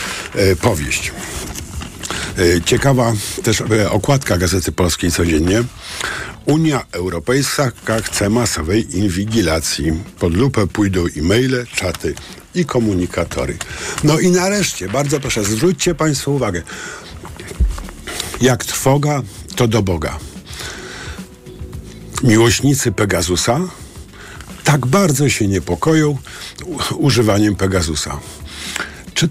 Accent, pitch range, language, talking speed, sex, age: native, 90-120 Hz, Polish, 85 wpm, male, 50-69